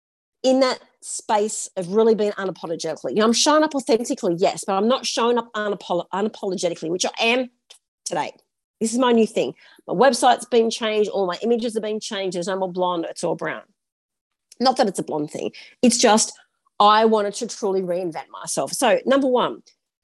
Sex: female